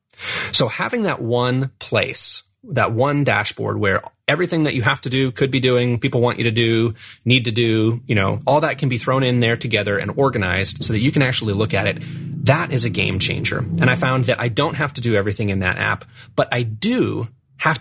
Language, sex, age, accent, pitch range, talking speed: English, male, 30-49, American, 110-135 Hz, 230 wpm